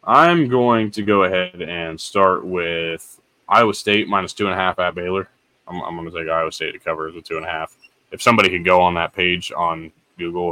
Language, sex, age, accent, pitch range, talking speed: English, male, 20-39, American, 90-115 Hz, 230 wpm